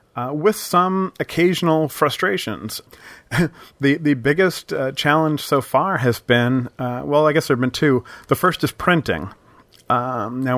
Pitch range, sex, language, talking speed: 115-140 Hz, male, English, 160 wpm